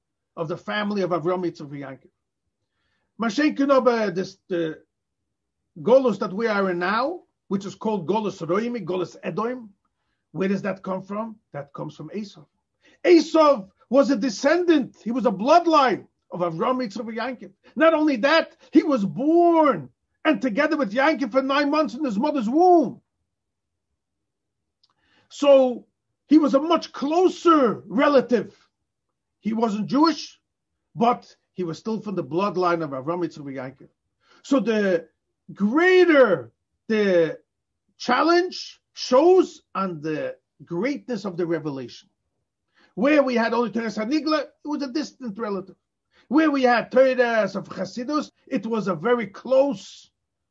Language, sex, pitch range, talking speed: English, male, 175-275 Hz, 135 wpm